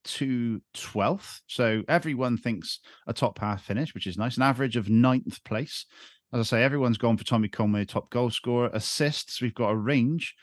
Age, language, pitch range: 40-59, English, 105-130 Hz